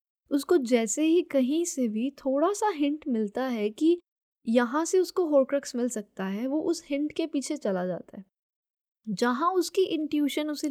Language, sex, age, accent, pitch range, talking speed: Hindi, female, 10-29, native, 230-310 Hz, 175 wpm